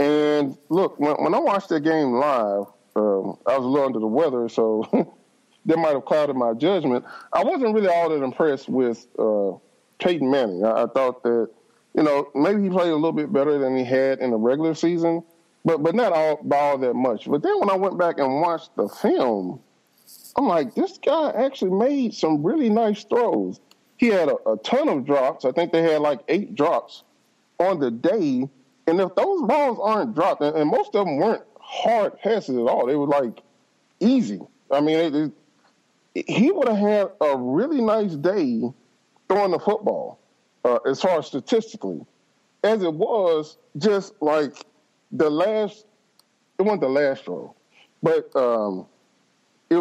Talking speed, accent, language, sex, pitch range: 185 wpm, American, English, male, 135-200 Hz